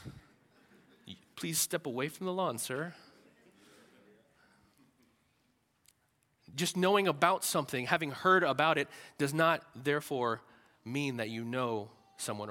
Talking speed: 110 wpm